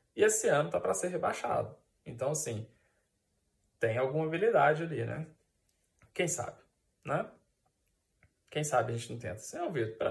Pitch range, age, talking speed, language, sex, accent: 130-195 Hz, 20-39, 165 wpm, Portuguese, male, Brazilian